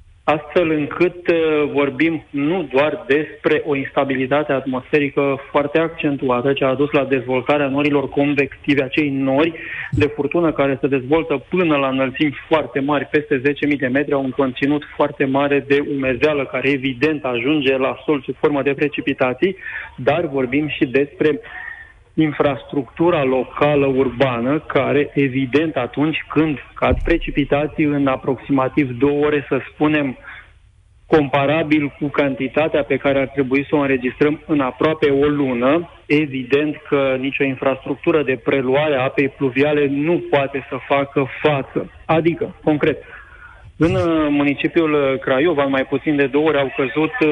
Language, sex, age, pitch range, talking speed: Romanian, male, 30-49, 135-150 Hz, 140 wpm